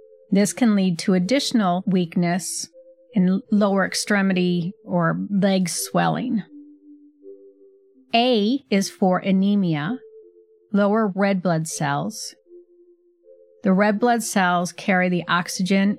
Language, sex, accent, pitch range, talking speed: English, female, American, 175-245 Hz, 100 wpm